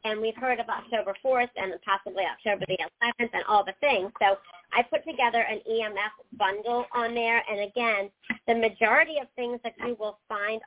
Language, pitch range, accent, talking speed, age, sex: English, 205-255 Hz, American, 190 wpm, 40-59, male